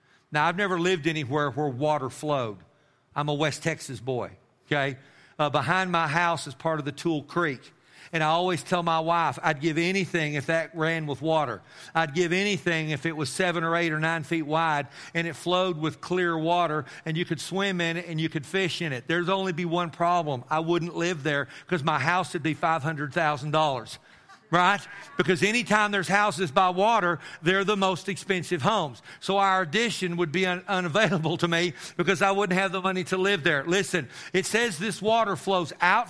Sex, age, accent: male, 50-69, American